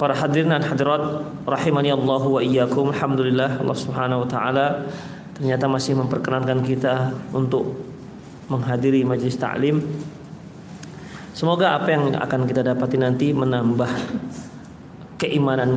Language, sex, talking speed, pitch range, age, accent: Indonesian, male, 105 wpm, 130-160 Hz, 30-49, native